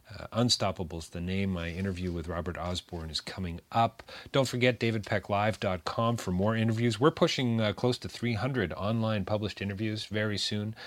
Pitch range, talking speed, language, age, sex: 90-115 Hz, 160 wpm, English, 40-59, male